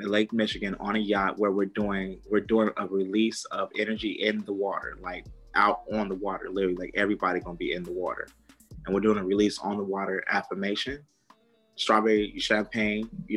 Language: English